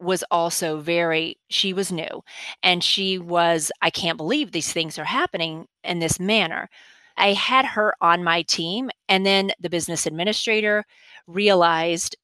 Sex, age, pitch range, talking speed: female, 30-49, 170-215 Hz, 150 wpm